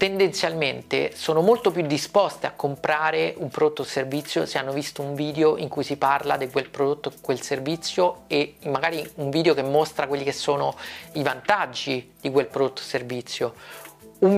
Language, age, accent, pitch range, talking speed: Italian, 40-59, native, 135-160 Hz, 180 wpm